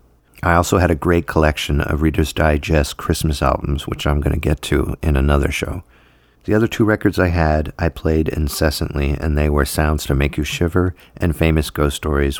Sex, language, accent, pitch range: male, English, American, 75-90 Hz